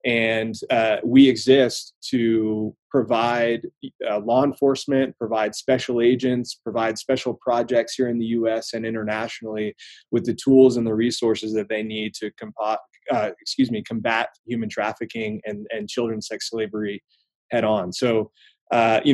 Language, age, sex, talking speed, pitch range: English, 20-39, male, 140 wpm, 115-135 Hz